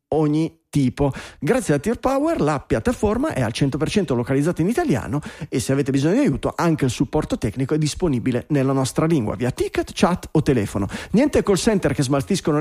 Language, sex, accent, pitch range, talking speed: Italian, male, native, 140-200 Hz, 180 wpm